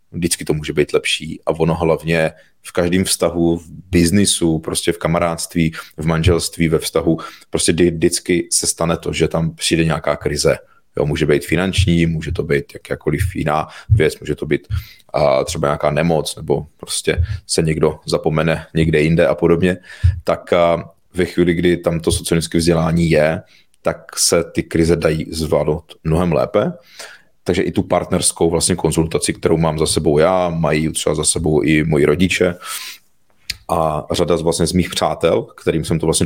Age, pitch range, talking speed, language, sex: 30-49, 80-85 Hz, 170 wpm, Czech, male